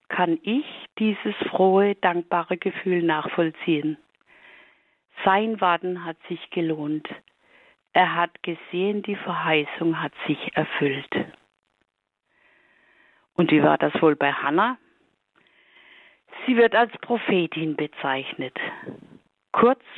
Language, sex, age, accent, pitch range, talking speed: German, female, 50-69, German, 160-210 Hz, 100 wpm